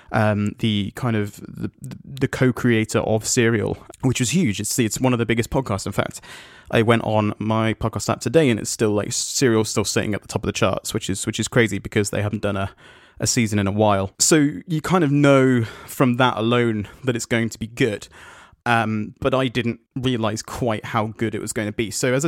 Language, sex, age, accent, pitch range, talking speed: English, male, 30-49, British, 110-130 Hz, 230 wpm